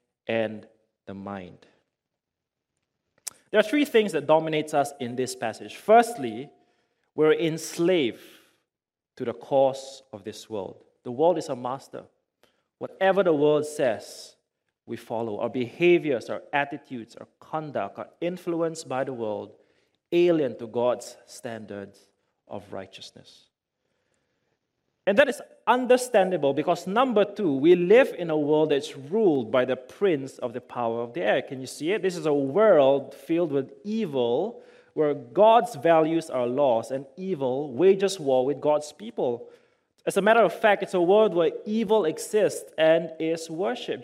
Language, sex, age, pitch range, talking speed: English, male, 30-49, 130-200 Hz, 150 wpm